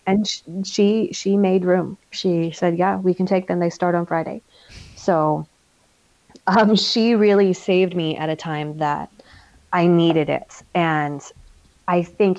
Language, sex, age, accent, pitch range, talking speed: English, female, 30-49, American, 170-195 Hz, 155 wpm